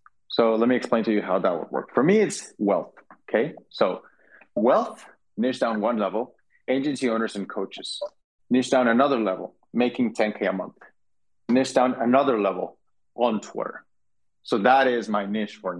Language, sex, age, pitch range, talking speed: English, male, 30-49, 105-130 Hz, 170 wpm